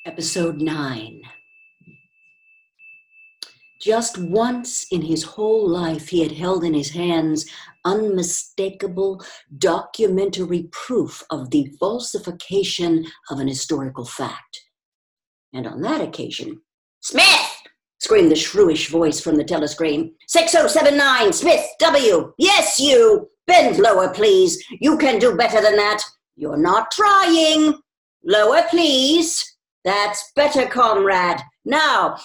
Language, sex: English, female